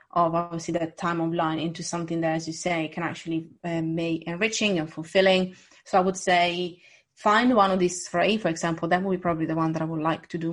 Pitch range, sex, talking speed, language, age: 170-190 Hz, female, 240 wpm, English, 30-49